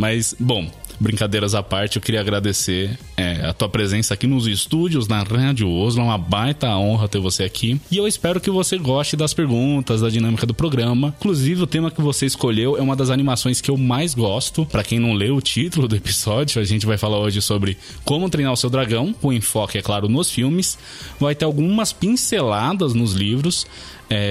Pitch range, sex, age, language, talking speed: 110-150 Hz, male, 20-39, Portuguese, 200 wpm